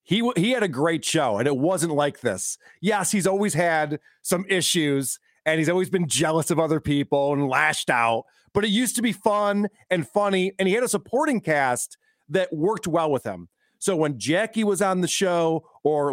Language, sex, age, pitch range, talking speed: English, male, 40-59, 160-210 Hz, 205 wpm